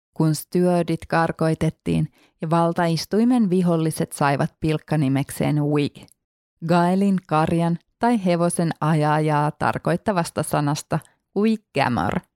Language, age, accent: Finnish, 20-39, native